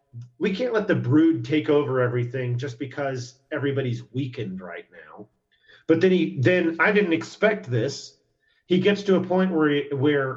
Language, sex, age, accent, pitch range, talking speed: English, male, 40-59, American, 120-155 Hz, 170 wpm